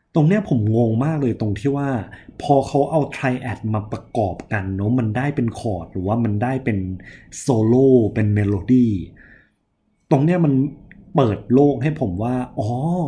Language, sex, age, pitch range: Thai, male, 20-39, 105-140 Hz